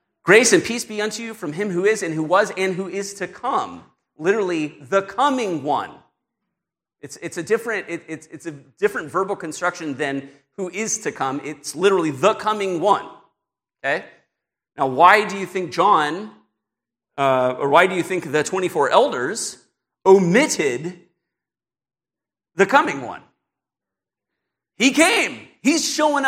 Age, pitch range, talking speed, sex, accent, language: 40-59, 135-200 Hz, 155 wpm, male, American, English